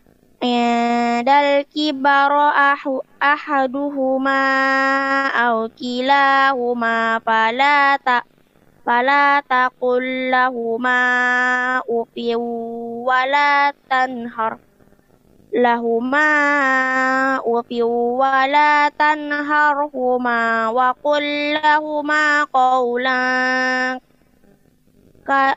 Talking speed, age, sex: 40 wpm, 20-39, female